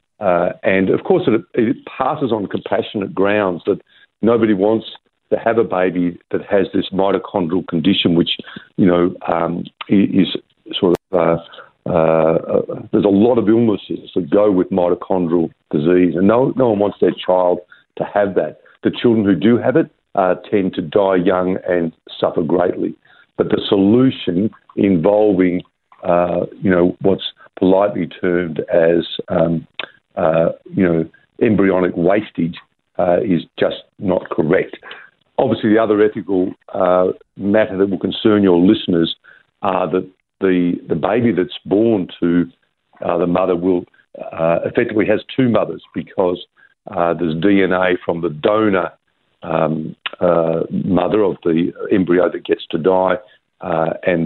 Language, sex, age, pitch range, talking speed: English, male, 50-69, 85-100 Hz, 150 wpm